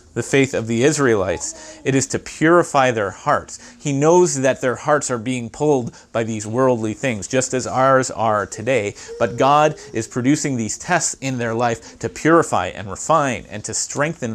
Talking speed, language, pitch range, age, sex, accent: 185 wpm, English, 115-140 Hz, 30-49, male, American